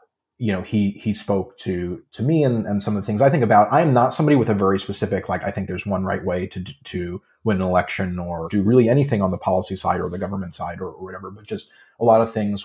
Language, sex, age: English, male, 30-49